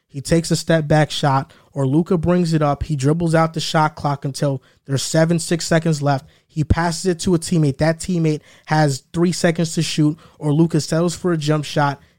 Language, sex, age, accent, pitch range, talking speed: English, male, 20-39, American, 150-175 Hz, 210 wpm